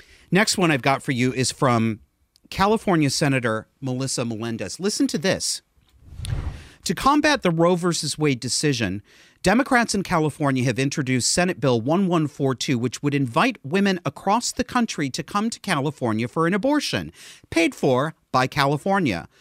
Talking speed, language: 150 wpm, English